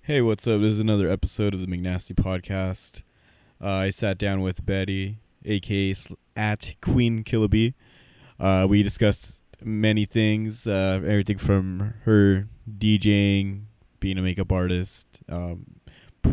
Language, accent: English, American